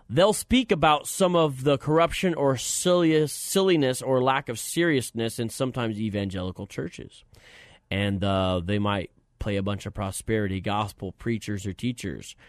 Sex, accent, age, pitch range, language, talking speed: male, American, 30-49, 105-135 Hz, English, 145 wpm